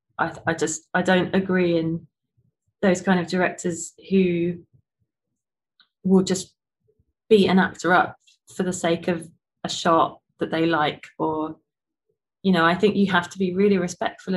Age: 20-39